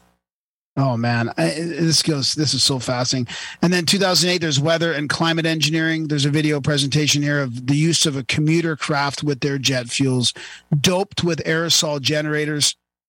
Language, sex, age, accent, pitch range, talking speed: English, male, 40-59, American, 140-165 Hz, 170 wpm